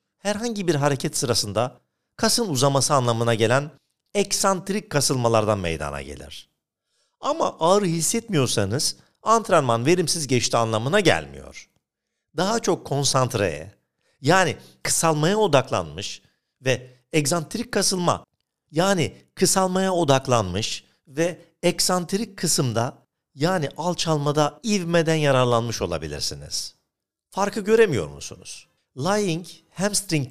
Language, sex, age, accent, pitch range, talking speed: Turkish, male, 50-69, native, 115-180 Hz, 90 wpm